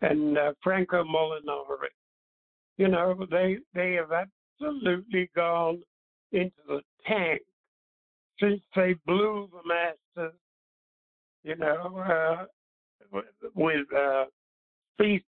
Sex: male